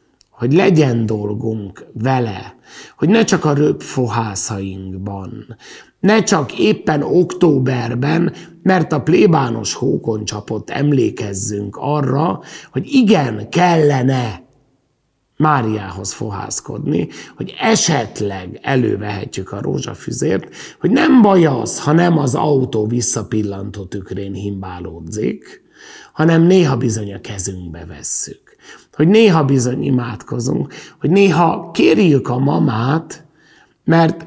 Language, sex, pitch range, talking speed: Hungarian, male, 105-155 Hz, 100 wpm